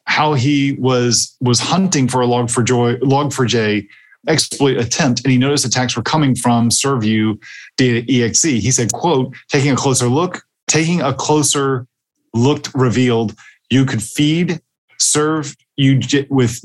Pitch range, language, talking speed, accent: 120-140 Hz, English, 155 wpm, American